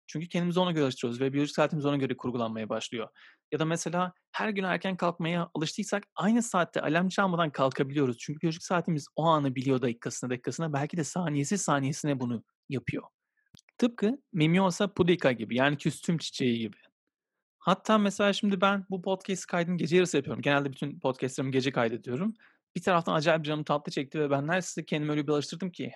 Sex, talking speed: male, 175 wpm